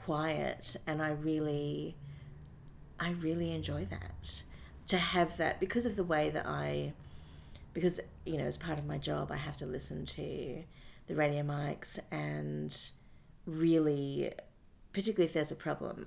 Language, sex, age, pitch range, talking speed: English, female, 40-59, 95-160 Hz, 150 wpm